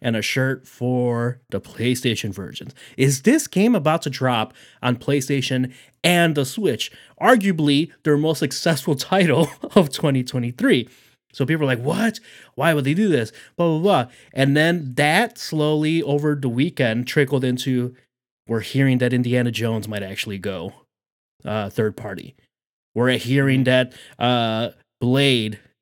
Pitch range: 120-160 Hz